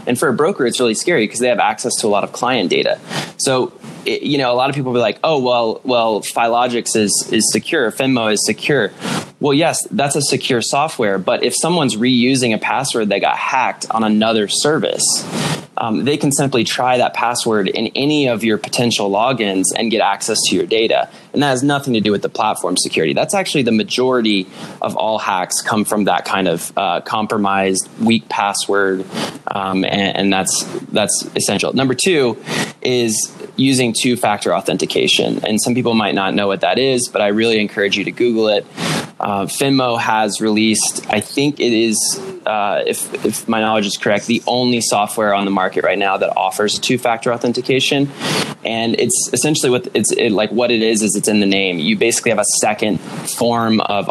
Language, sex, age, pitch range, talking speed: English, male, 20-39, 105-125 Hz, 200 wpm